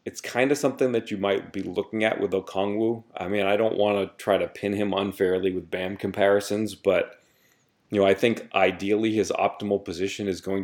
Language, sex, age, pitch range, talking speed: English, male, 30-49, 95-110 Hz, 210 wpm